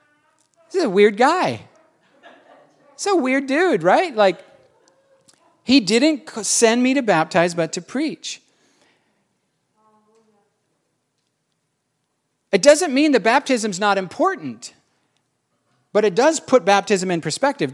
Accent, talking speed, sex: American, 110 wpm, male